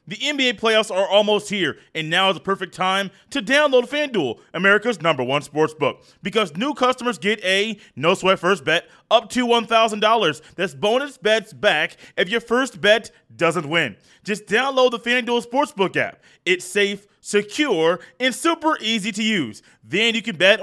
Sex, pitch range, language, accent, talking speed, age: male, 190-250 Hz, English, American, 165 wpm, 20-39